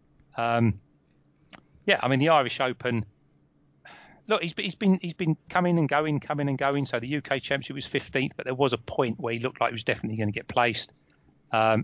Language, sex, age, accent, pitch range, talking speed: English, male, 30-49, British, 110-140 Hz, 215 wpm